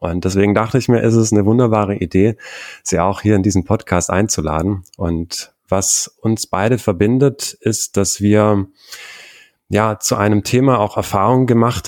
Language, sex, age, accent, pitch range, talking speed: German, male, 30-49, German, 95-115 Hz, 160 wpm